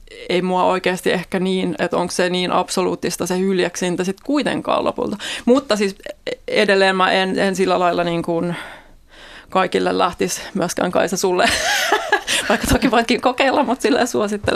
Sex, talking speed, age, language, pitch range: female, 155 wpm, 20-39, Finnish, 180-205 Hz